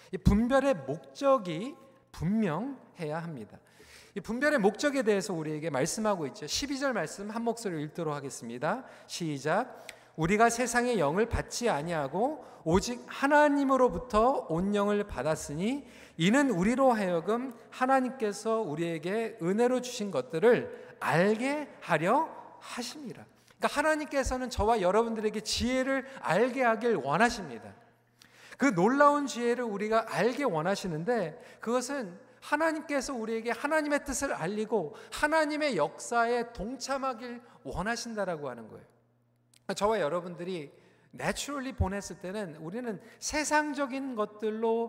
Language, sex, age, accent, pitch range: Korean, male, 40-59, native, 185-265 Hz